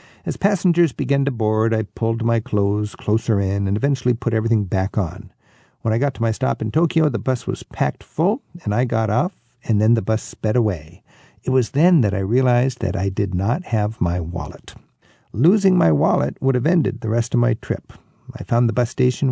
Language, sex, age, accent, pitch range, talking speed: English, male, 60-79, American, 110-140 Hz, 215 wpm